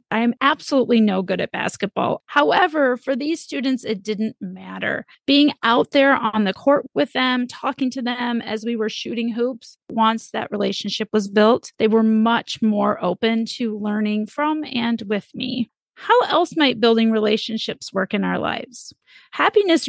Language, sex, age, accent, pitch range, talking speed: English, female, 30-49, American, 225-315 Hz, 170 wpm